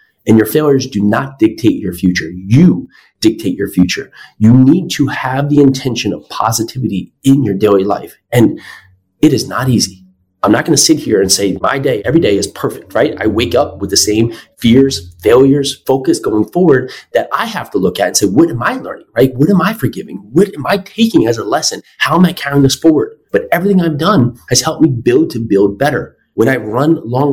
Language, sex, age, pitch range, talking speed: English, male, 30-49, 105-150 Hz, 220 wpm